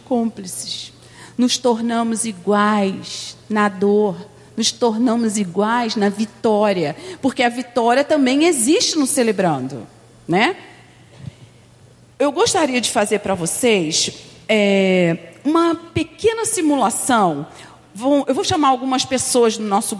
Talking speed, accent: 110 wpm, Brazilian